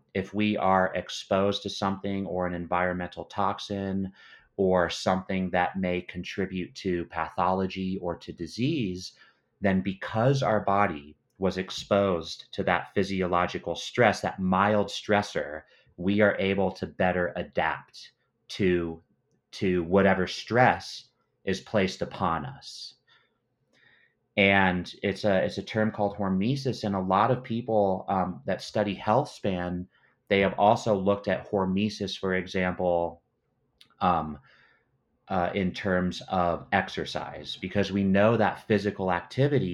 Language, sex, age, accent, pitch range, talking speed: English, male, 30-49, American, 90-100 Hz, 130 wpm